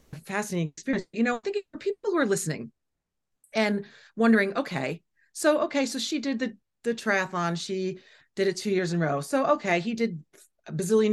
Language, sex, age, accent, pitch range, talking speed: English, female, 40-59, American, 175-235 Hz, 190 wpm